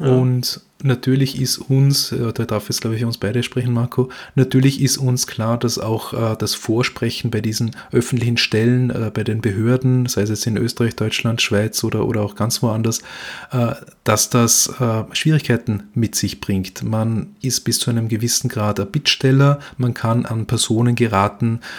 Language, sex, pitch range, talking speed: German, male, 105-125 Hz, 180 wpm